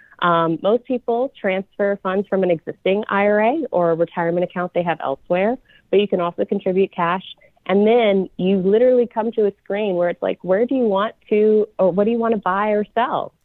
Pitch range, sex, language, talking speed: 155-200 Hz, female, English, 210 wpm